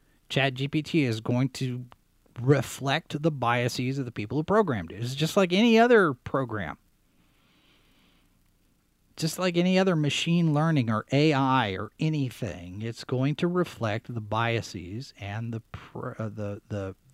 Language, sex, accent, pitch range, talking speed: English, male, American, 110-150 Hz, 135 wpm